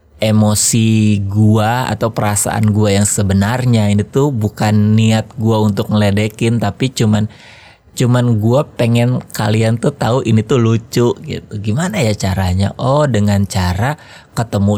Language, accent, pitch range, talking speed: Indonesian, native, 100-120 Hz, 135 wpm